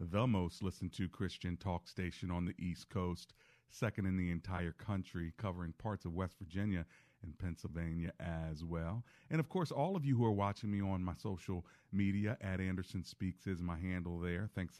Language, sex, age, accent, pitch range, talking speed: English, male, 40-59, American, 85-115 Hz, 190 wpm